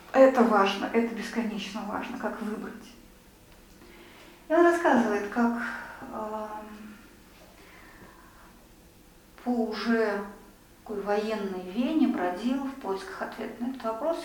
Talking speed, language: 95 wpm, Russian